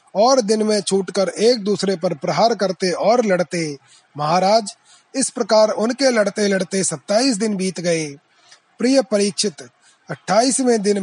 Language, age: Hindi, 30-49